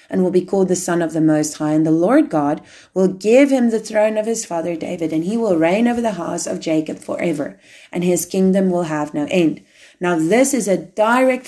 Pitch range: 165-220 Hz